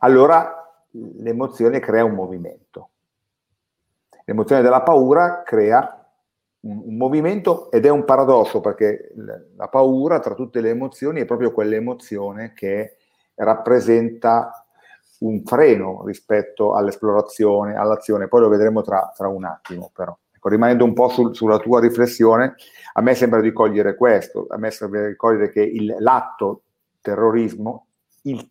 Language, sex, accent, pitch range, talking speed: Italian, male, native, 105-125 Hz, 130 wpm